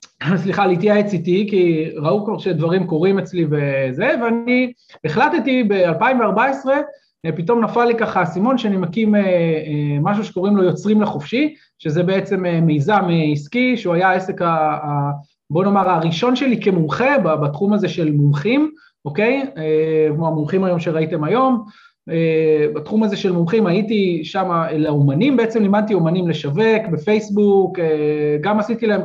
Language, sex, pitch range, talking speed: Hebrew, male, 170-225 Hz, 135 wpm